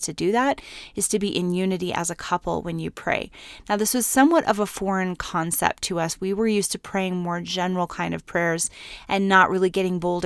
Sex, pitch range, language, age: female, 175-205 Hz, English, 30-49